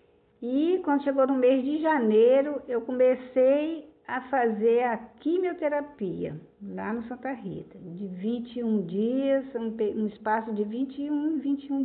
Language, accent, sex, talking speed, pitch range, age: Portuguese, Brazilian, female, 125 wpm, 200-250 Hz, 60-79